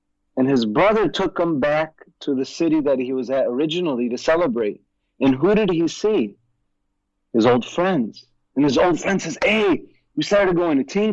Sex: male